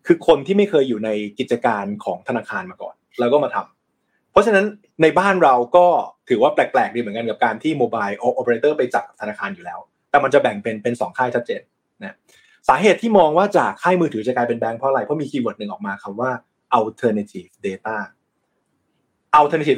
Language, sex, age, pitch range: Thai, male, 20-39, 125-185 Hz